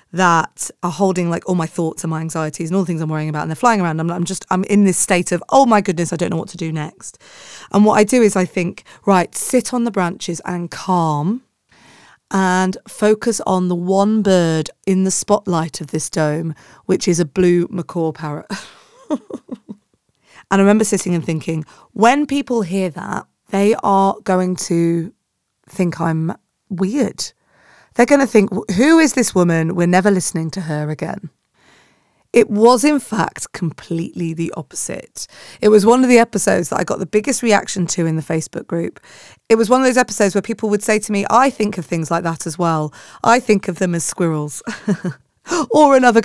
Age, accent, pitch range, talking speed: 30-49, British, 170-215 Hz, 200 wpm